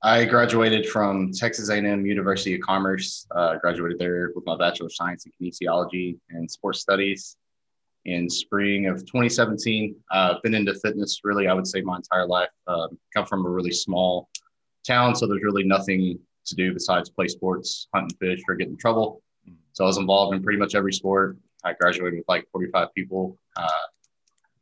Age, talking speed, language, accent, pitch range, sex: 20-39, 185 wpm, English, American, 90-100 Hz, male